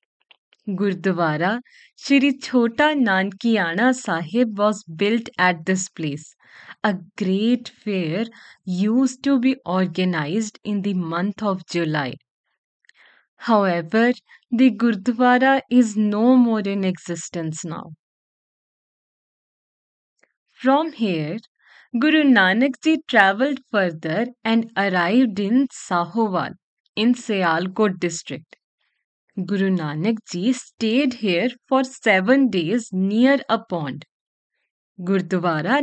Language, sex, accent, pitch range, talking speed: English, female, Indian, 185-250 Hz, 95 wpm